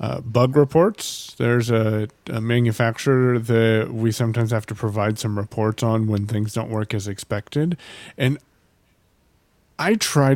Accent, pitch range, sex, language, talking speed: American, 110-130 Hz, male, English, 145 wpm